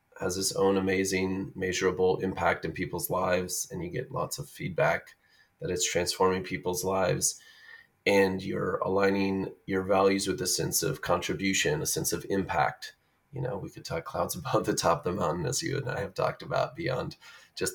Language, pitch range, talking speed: English, 95-110 Hz, 185 wpm